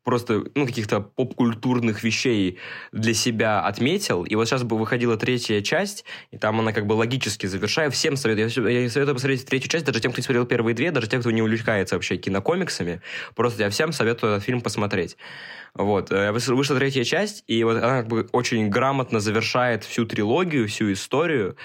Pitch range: 110-130 Hz